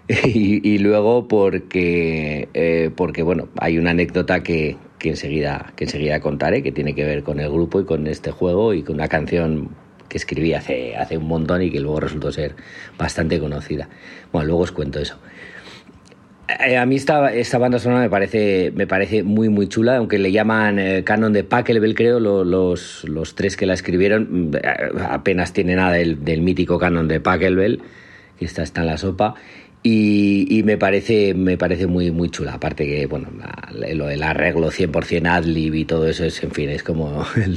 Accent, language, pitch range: Spanish, Spanish, 85-105 Hz